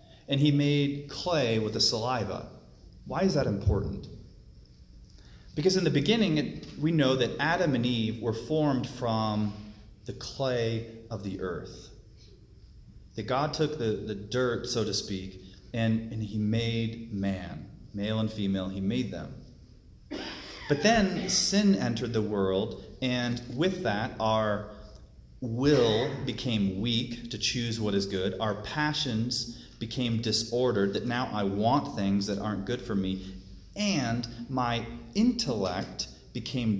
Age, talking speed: 30-49, 140 wpm